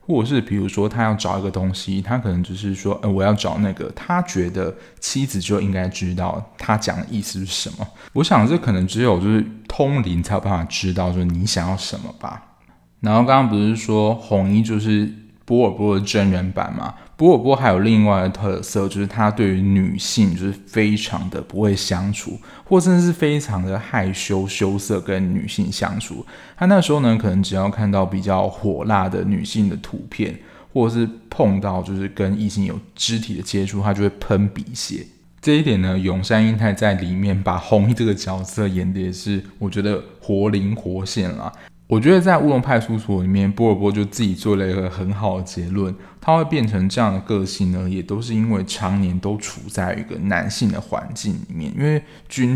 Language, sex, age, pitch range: Chinese, male, 20-39, 95-110 Hz